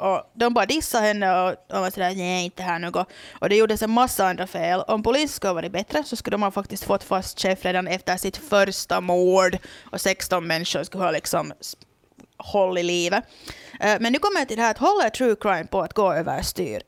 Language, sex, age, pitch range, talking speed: Swedish, female, 30-49, 175-215 Hz, 225 wpm